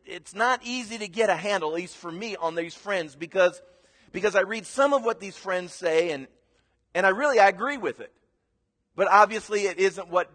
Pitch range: 130-190 Hz